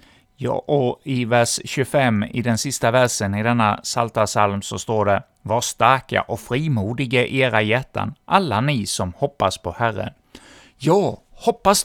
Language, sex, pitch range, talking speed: Swedish, male, 110-150 Hz, 150 wpm